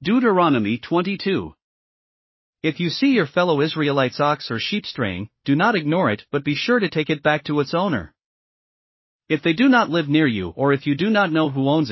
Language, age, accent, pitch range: English, 40-59, American, 140-175 Hz